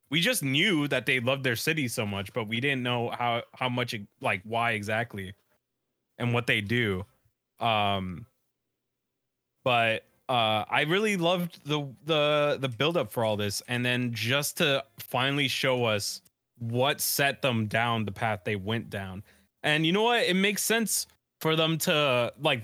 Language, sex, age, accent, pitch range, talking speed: English, male, 20-39, American, 115-150 Hz, 165 wpm